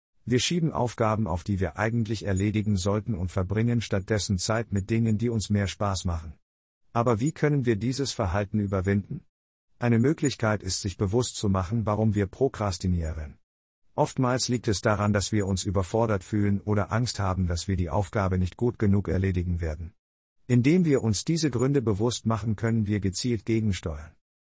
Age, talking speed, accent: 50-69, 170 wpm, German